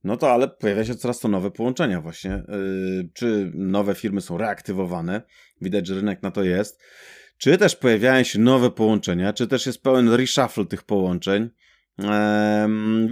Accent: native